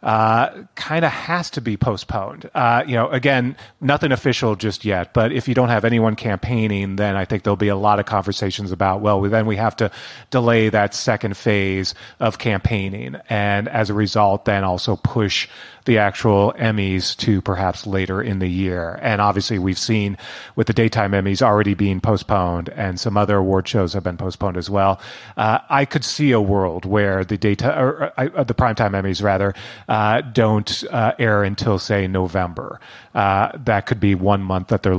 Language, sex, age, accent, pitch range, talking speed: English, male, 30-49, American, 100-115 Hz, 190 wpm